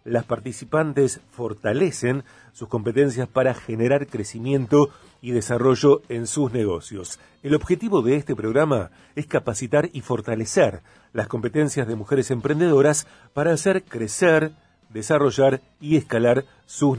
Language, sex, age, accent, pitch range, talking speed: Spanish, male, 40-59, Argentinian, 115-150 Hz, 120 wpm